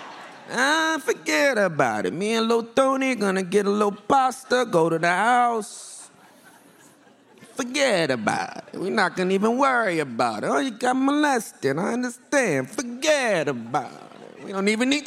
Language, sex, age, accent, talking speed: English, male, 30-49, American, 165 wpm